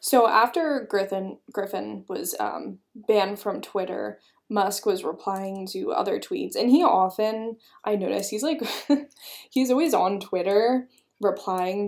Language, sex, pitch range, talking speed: English, female, 195-255 Hz, 135 wpm